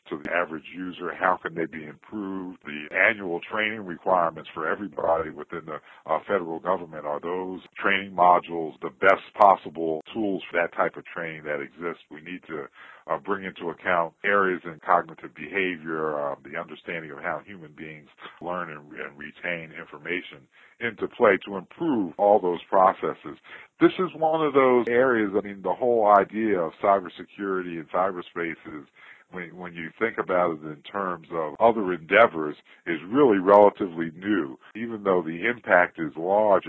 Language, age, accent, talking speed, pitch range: English, 50-69, American, 165 wpm, 80-105 Hz